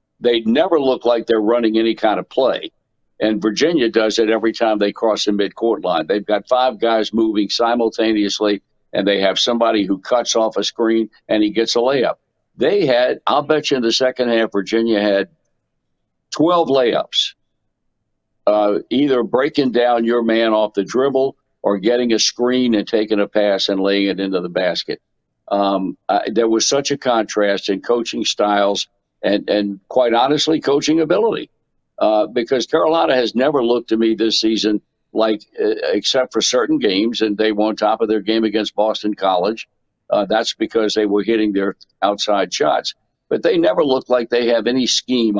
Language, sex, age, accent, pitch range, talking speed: English, male, 60-79, American, 105-120 Hz, 180 wpm